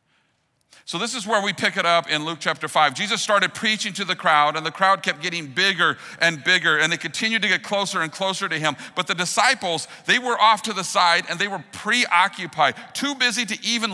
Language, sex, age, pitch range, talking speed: English, male, 50-69, 120-185 Hz, 230 wpm